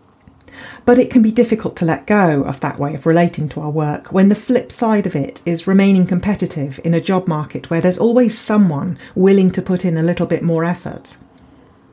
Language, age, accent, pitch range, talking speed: English, 40-59, British, 145-195 Hz, 210 wpm